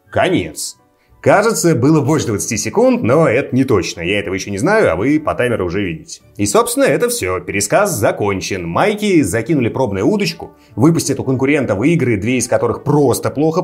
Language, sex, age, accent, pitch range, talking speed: Russian, male, 30-49, native, 110-180 Hz, 175 wpm